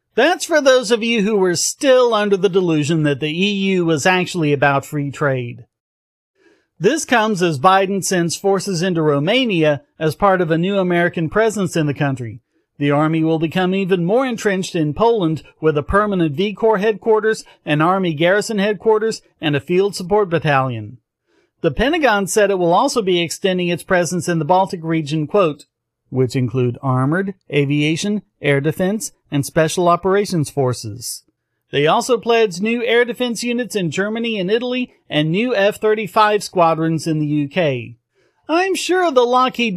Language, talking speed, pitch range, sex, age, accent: English, 165 wpm, 155-220 Hz, male, 40-59, American